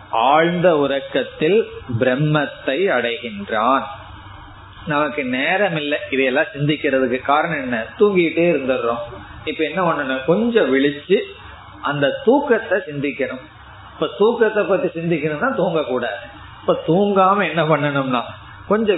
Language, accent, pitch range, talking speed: Tamil, native, 135-190 Hz, 85 wpm